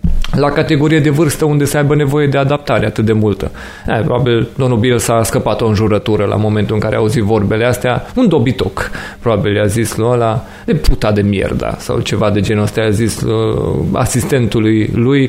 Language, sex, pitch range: Romanian, male, 110-150 Hz